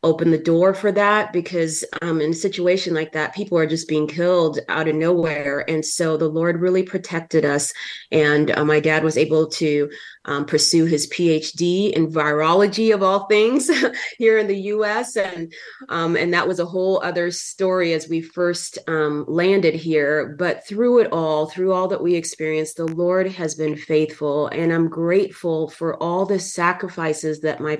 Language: English